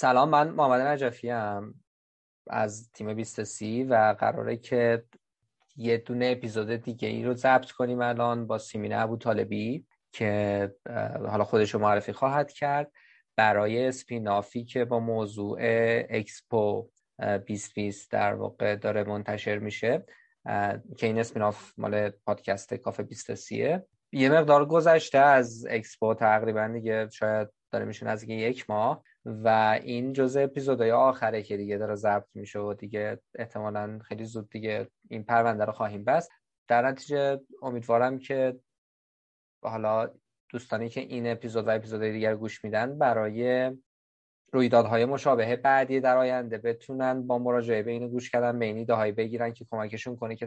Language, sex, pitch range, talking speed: Persian, male, 110-125 Hz, 140 wpm